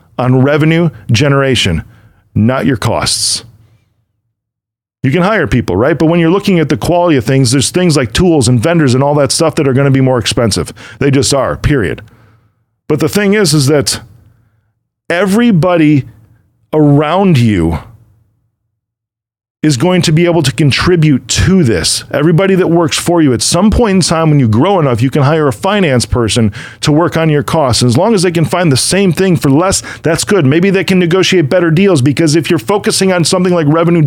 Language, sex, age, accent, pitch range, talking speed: English, male, 40-59, American, 125-185 Hz, 195 wpm